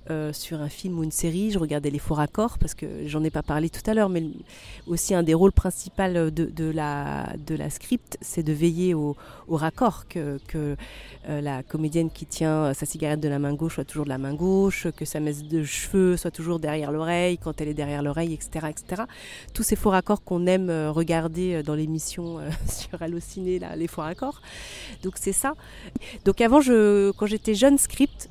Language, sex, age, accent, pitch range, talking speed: French, female, 30-49, French, 155-195 Hz, 215 wpm